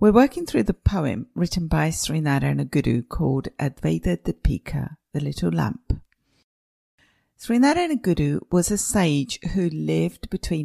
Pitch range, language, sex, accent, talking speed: 140-180 Hz, English, female, British, 130 wpm